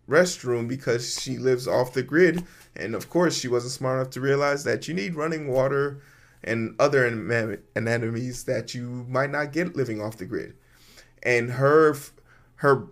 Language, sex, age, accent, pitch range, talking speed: English, male, 20-39, American, 125-160 Hz, 165 wpm